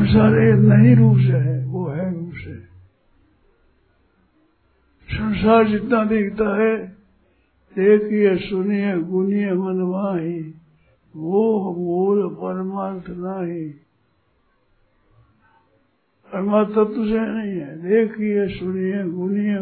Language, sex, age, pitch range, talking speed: Hindi, male, 60-79, 120-200 Hz, 90 wpm